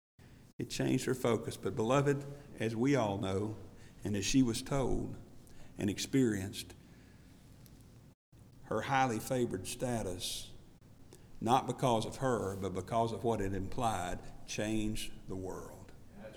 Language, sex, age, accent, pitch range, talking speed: English, male, 50-69, American, 110-150 Hz, 125 wpm